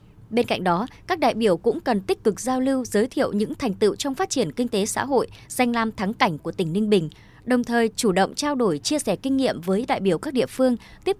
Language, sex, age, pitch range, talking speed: Vietnamese, male, 20-39, 195-255 Hz, 265 wpm